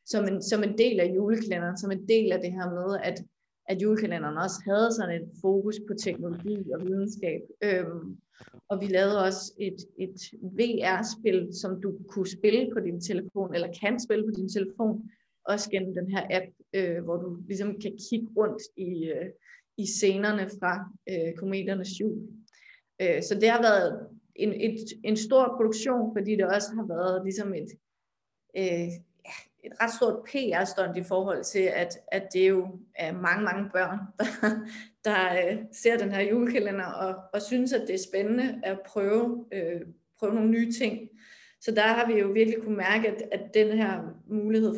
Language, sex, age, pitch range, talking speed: Danish, female, 30-49, 185-215 Hz, 170 wpm